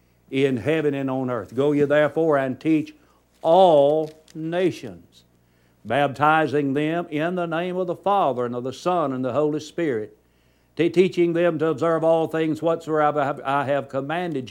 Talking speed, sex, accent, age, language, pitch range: 160 wpm, male, American, 60-79, English, 120-160 Hz